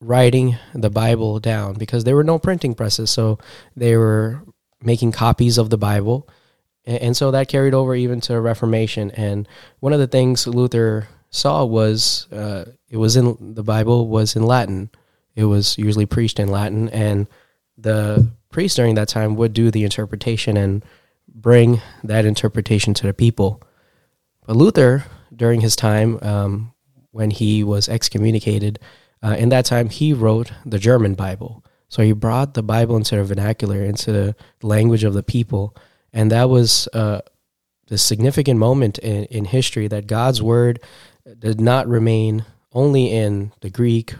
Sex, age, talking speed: male, 20-39, 165 wpm